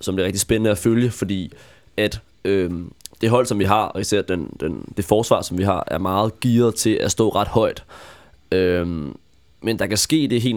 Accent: native